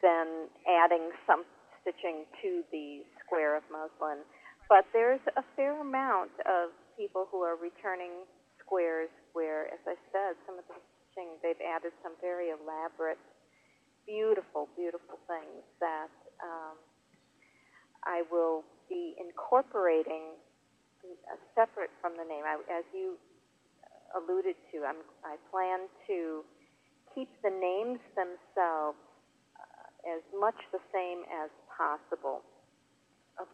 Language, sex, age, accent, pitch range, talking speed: English, female, 40-59, American, 160-195 Hz, 120 wpm